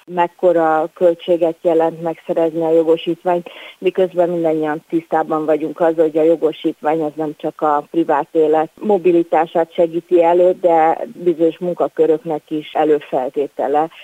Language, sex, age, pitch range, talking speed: Hungarian, female, 30-49, 155-175 Hz, 120 wpm